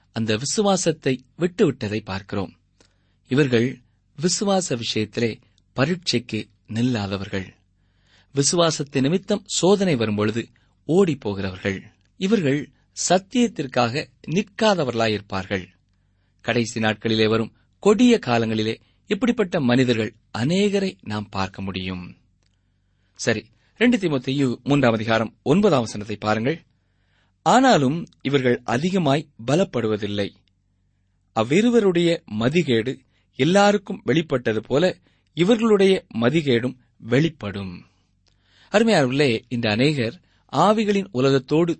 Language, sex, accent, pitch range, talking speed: Tamil, male, native, 100-165 Hz, 70 wpm